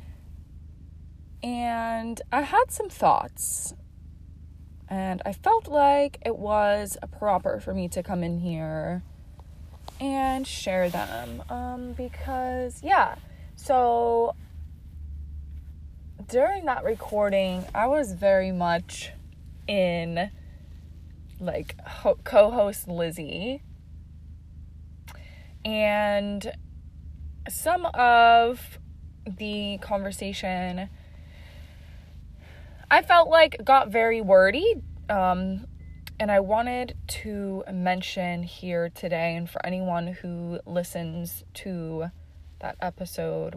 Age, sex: 20-39, female